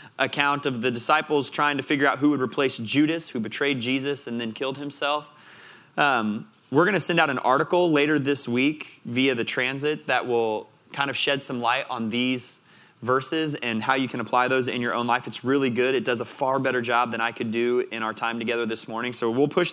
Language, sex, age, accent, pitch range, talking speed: English, male, 20-39, American, 125-155 Hz, 230 wpm